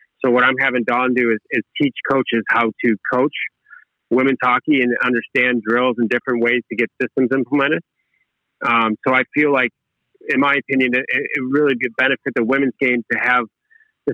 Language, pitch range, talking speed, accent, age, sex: English, 115-130 Hz, 185 wpm, American, 40-59, male